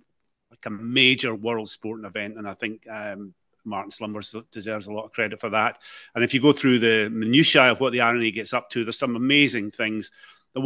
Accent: British